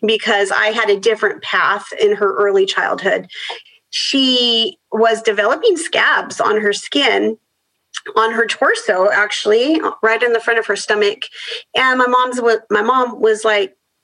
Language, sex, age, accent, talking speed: English, female, 40-59, American, 150 wpm